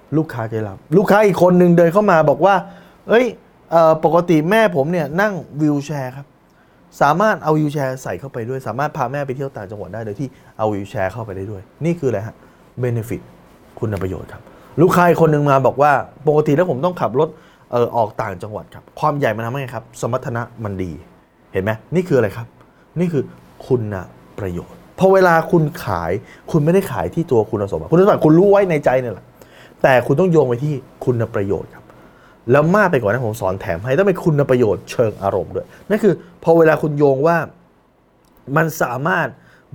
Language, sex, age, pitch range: Thai, male, 20-39, 115-165 Hz